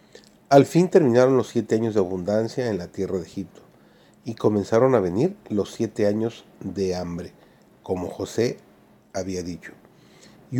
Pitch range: 100-140 Hz